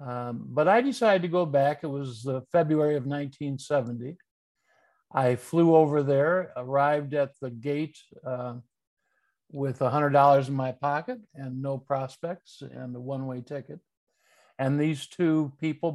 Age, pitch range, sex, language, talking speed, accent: 60-79, 130-160 Hz, male, English, 145 wpm, American